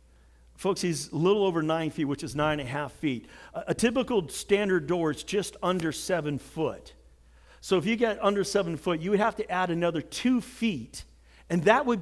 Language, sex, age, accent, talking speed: English, male, 50-69, American, 205 wpm